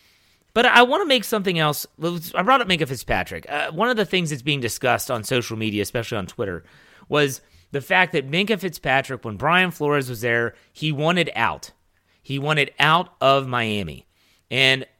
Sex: male